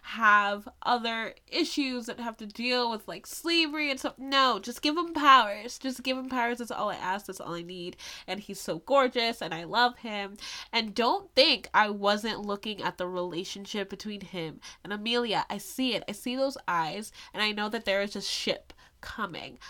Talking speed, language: 200 wpm, English